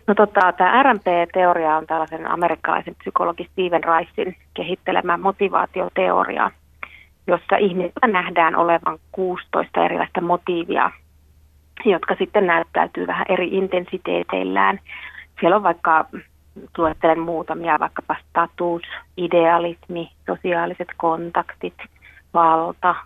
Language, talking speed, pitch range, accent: Finnish, 95 wpm, 165-190 Hz, native